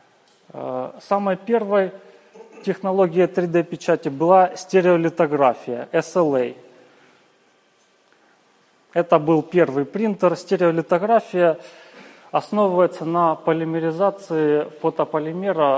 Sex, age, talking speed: male, 30-49, 60 wpm